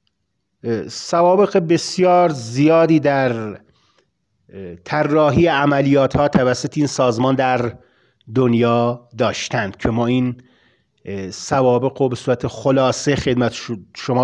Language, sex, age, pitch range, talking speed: Persian, male, 40-59, 120-145 Hz, 95 wpm